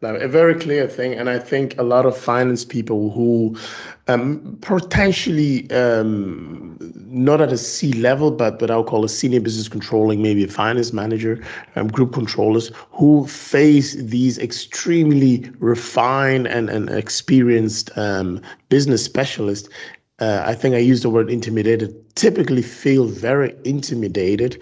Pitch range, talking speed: 110-140 Hz, 140 wpm